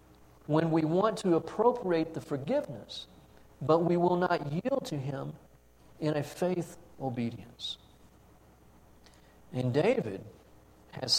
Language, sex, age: English, male, 60-79